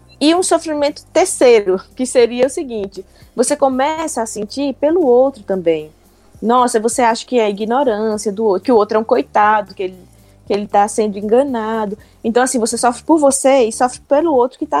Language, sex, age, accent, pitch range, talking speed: Portuguese, female, 20-39, Brazilian, 190-255 Hz, 200 wpm